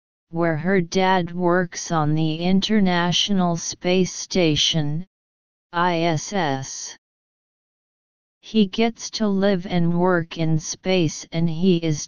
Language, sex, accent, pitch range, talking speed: English, female, American, 155-190 Hz, 105 wpm